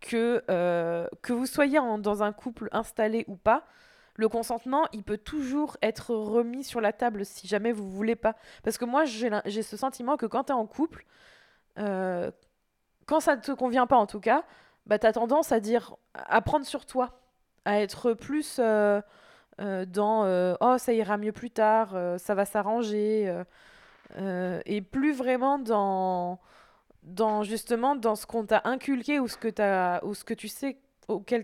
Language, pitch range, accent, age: French, 205-250 Hz, French, 20-39